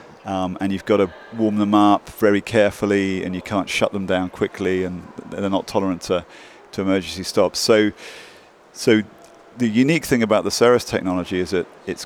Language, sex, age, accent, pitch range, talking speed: English, male, 40-59, British, 95-110 Hz, 185 wpm